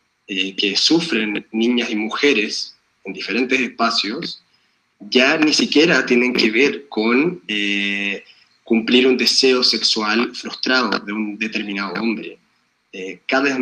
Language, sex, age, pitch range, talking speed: Spanish, male, 20-39, 110-135 Hz, 125 wpm